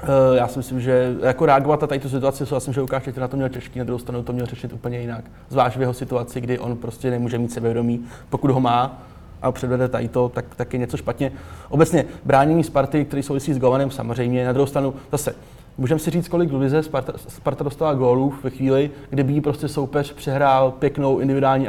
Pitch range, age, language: 125-140 Hz, 20-39, Czech